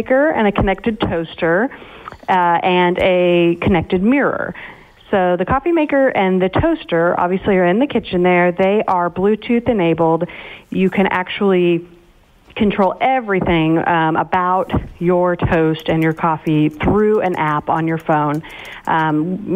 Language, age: English, 40-59